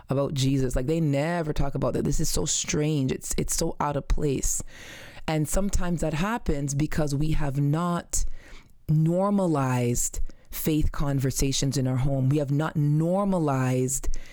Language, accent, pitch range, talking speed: English, American, 135-165 Hz, 150 wpm